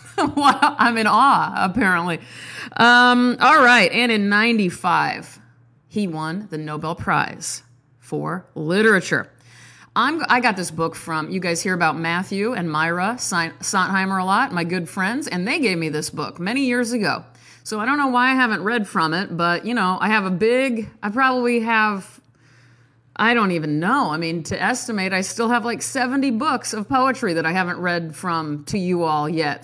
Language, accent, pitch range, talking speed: English, American, 170-245 Hz, 190 wpm